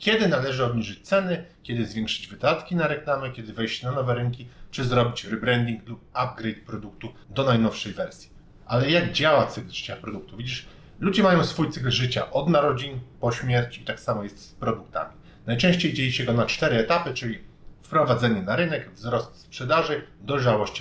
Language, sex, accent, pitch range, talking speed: Polish, male, native, 115-145 Hz, 170 wpm